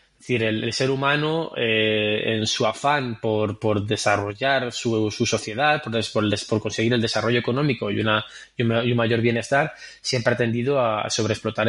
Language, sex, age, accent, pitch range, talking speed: Spanish, male, 20-39, Spanish, 110-125 Hz, 170 wpm